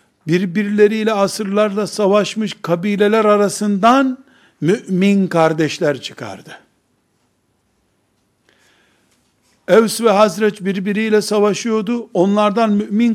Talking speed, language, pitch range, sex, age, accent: 70 wpm, Turkish, 195-215 Hz, male, 60-79, native